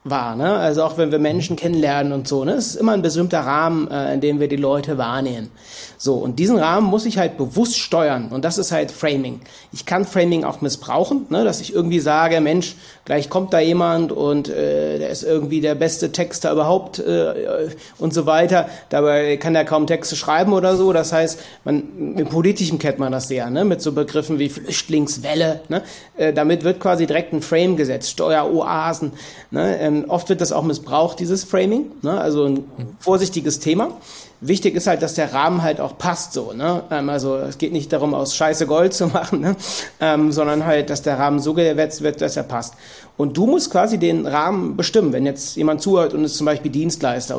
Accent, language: German, German